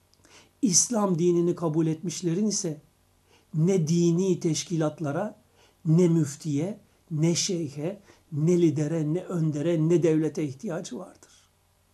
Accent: native